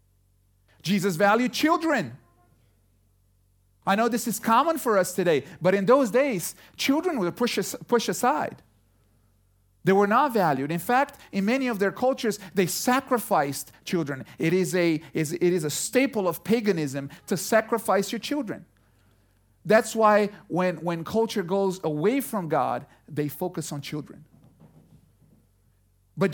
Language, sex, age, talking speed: English, male, 40-59, 140 wpm